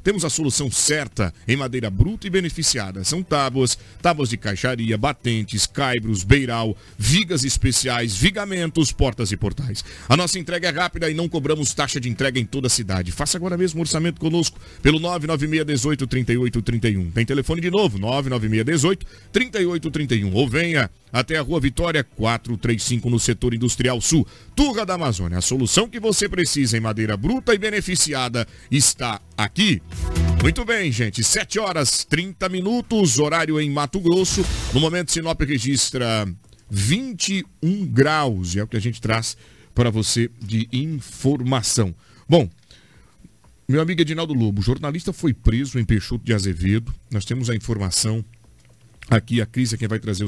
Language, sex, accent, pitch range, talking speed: Portuguese, male, Brazilian, 110-155 Hz, 155 wpm